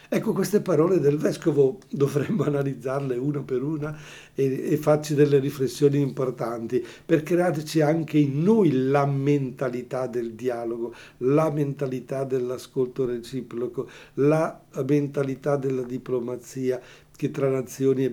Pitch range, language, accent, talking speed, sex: 130-150 Hz, Italian, native, 120 wpm, male